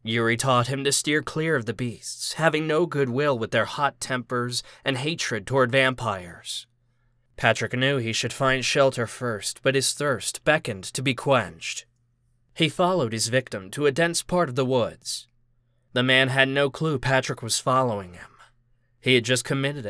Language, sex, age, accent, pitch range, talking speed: English, male, 20-39, American, 120-140 Hz, 180 wpm